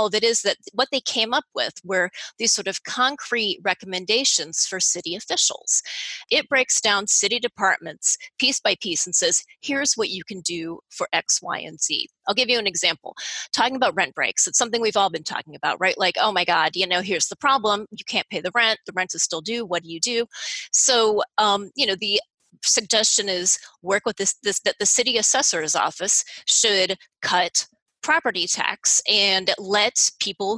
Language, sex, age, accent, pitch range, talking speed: English, female, 30-49, American, 185-235 Hz, 200 wpm